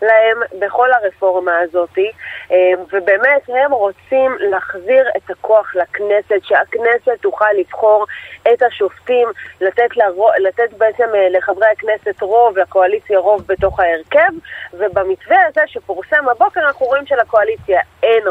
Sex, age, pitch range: female, 30-49, 190-255 Hz